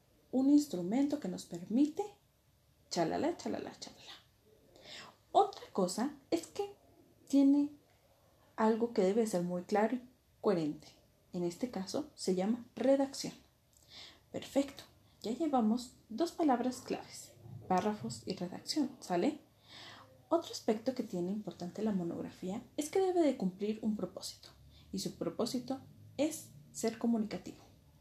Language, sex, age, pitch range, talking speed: Spanish, female, 30-49, 175-270 Hz, 120 wpm